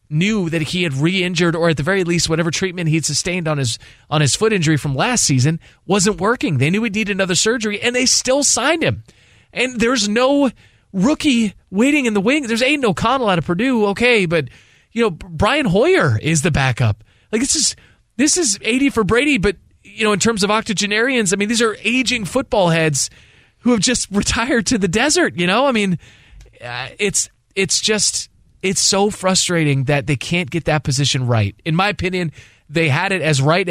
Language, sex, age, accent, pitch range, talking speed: English, male, 20-39, American, 130-200 Hz, 200 wpm